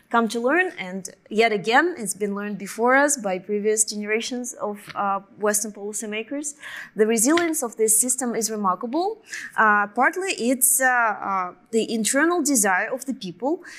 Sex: female